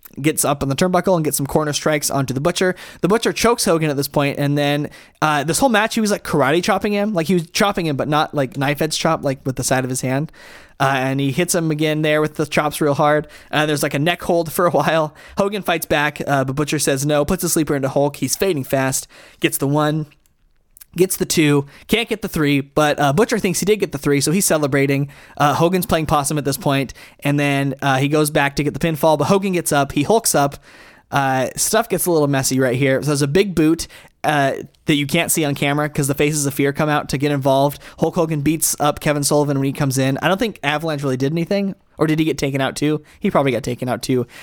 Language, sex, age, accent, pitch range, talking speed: English, male, 20-39, American, 140-170 Hz, 260 wpm